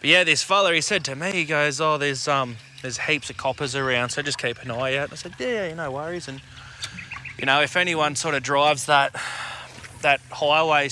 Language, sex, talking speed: English, male, 230 wpm